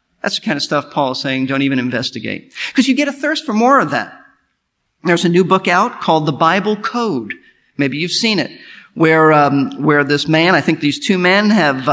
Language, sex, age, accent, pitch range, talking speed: English, male, 50-69, American, 155-255 Hz, 215 wpm